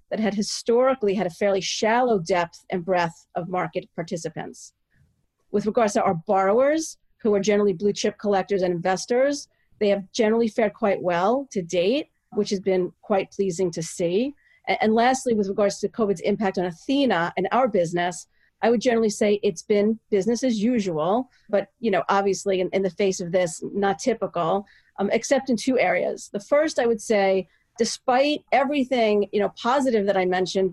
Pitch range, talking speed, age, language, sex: 190-230 Hz, 175 wpm, 40-59, English, female